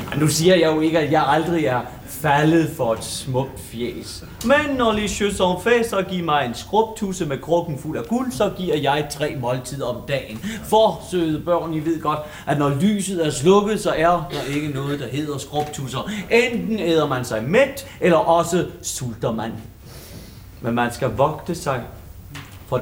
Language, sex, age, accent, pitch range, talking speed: Danish, male, 30-49, native, 130-190 Hz, 180 wpm